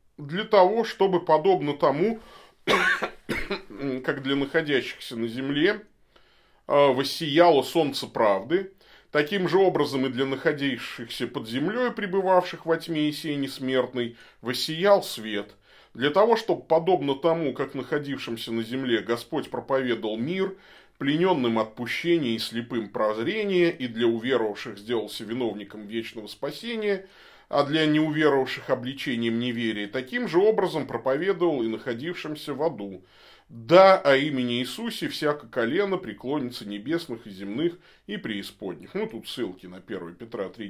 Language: Russian